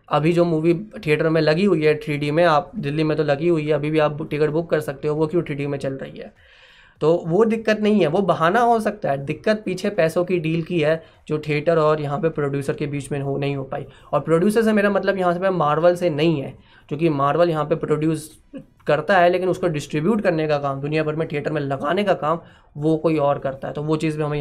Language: Hindi